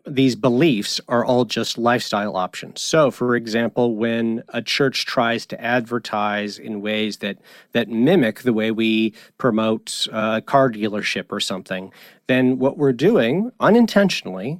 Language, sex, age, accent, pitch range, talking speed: English, male, 40-59, American, 110-150 Hz, 150 wpm